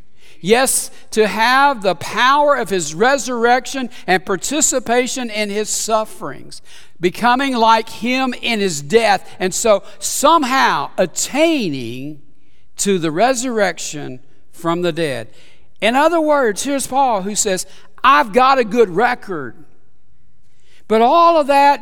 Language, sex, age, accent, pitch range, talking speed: English, male, 60-79, American, 165-250 Hz, 125 wpm